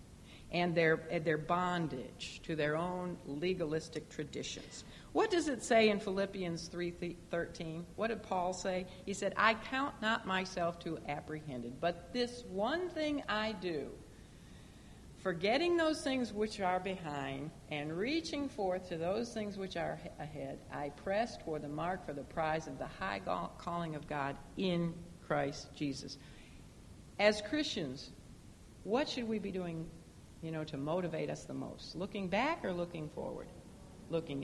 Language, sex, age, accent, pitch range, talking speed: English, female, 60-79, American, 155-205 Hz, 150 wpm